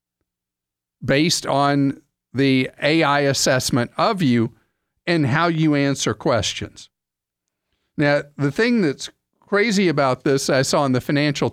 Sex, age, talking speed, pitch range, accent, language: male, 50-69, 125 wpm, 130-190 Hz, American, English